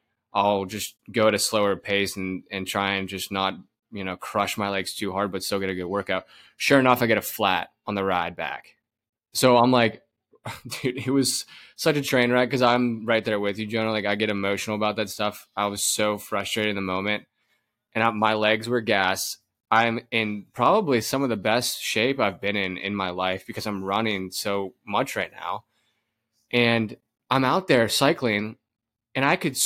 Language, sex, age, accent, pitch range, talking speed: English, male, 20-39, American, 100-120 Hz, 205 wpm